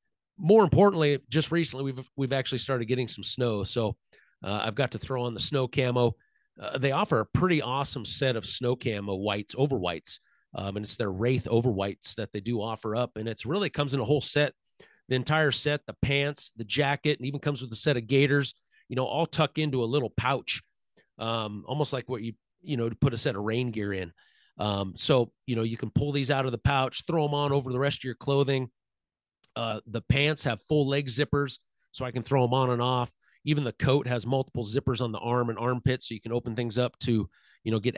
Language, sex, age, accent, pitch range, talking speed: English, male, 40-59, American, 115-140 Hz, 235 wpm